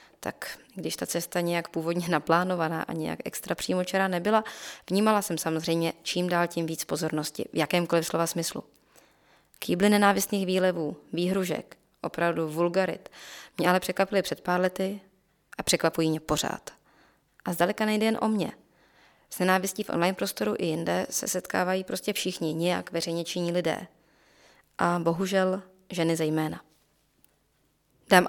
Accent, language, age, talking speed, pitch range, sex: native, Czech, 20-39, 140 wpm, 165-195 Hz, female